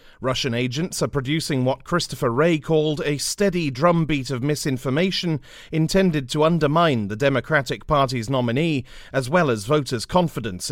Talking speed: 140 wpm